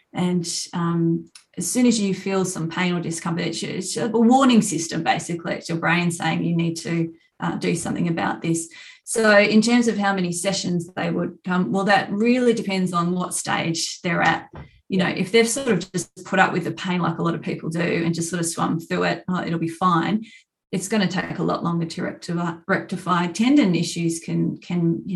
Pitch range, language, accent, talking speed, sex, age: 170-195 Hz, English, Australian, 215 wpm, female, 30-49